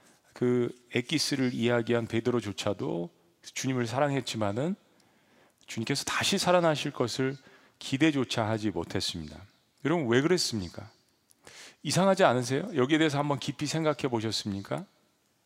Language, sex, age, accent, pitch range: Korean, male, 40-59, native, 115-160 Hz